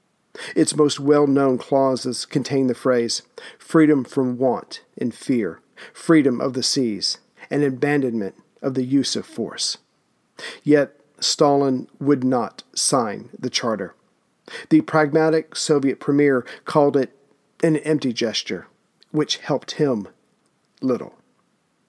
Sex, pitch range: male, 130-155 Hz